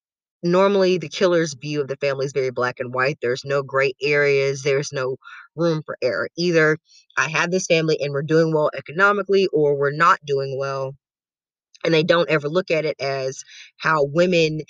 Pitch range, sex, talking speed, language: 140-175 Hz, female, 190 wpm, English